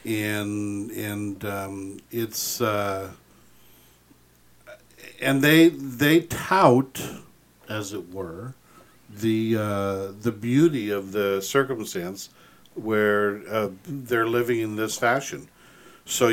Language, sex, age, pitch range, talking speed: English, male, 50-69, 100-115 Hz, 100 wpm